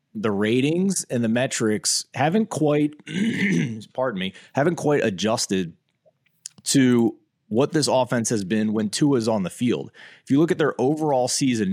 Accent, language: American, English